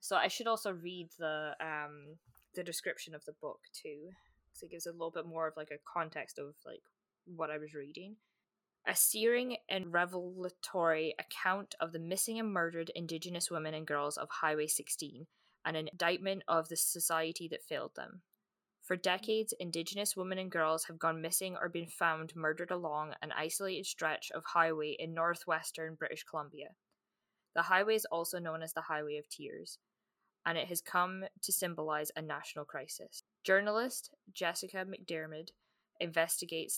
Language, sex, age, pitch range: English, female, 20-39, 160-190 Hz